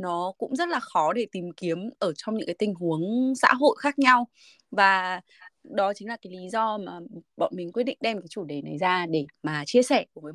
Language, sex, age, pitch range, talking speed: Vietnamese, female, 20-39, 165-225 Hz, 240 wpm